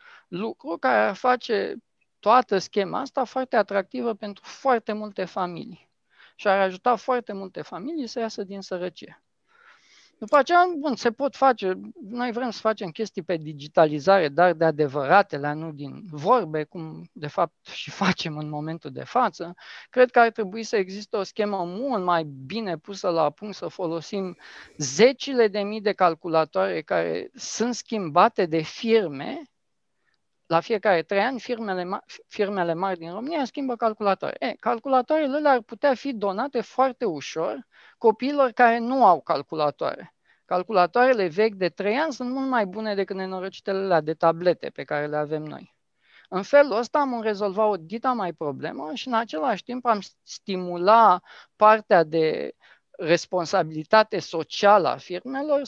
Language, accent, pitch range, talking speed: Romanian, native, 180-245 Hz, 150 wpm